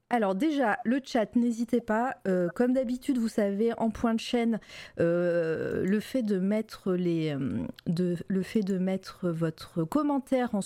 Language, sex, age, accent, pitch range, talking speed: French, female, 30-49, French, 175-230 Hz, 160 wpm